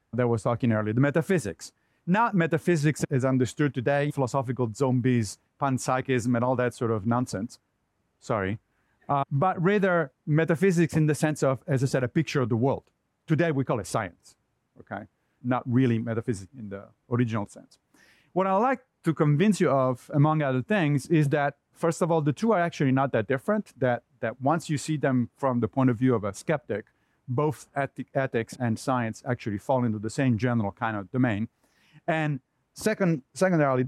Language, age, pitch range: English, 40-59, 115-155 Hz